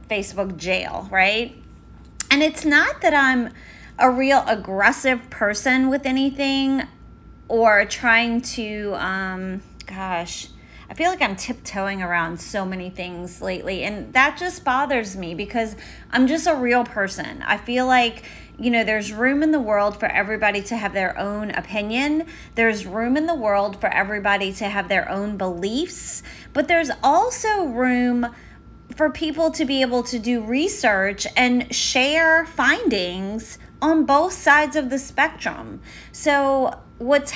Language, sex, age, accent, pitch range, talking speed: English, female, 30-49, American, 195-265 Hz, 150 wpm